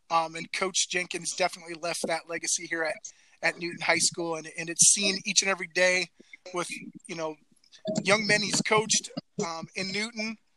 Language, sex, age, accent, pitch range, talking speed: English, male, 30-49, American, 170-200 Hz, 180 wpm